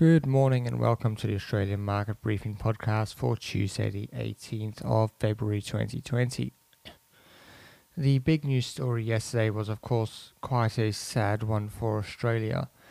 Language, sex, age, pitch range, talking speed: English, male, 20-39, 110-125 Hz, 145 wpm